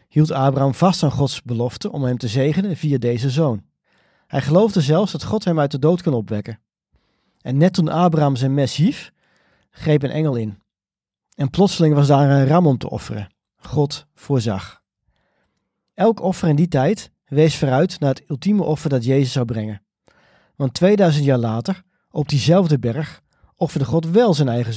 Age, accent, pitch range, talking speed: 40-59, Dutch, 125-160 Hz, 175 wpm